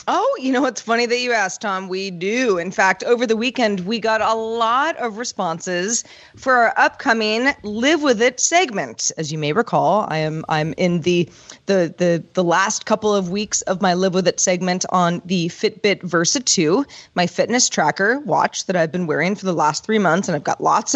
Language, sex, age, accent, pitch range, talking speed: English, female, 30-49, American, 180-240 Hz, 210 wpm